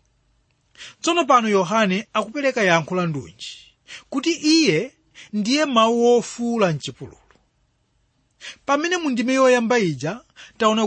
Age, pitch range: 30-49, 155-235 Hz